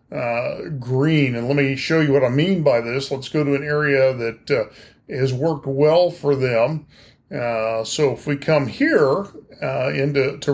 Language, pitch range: English, 130-155 Hz